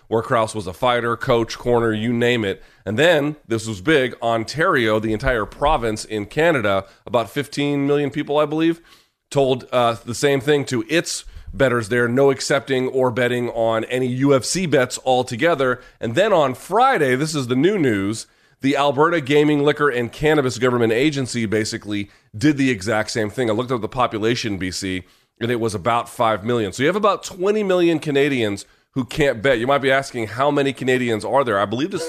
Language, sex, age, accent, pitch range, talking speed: English, male, 30-49, American, 115-145 Hz, 195 wpm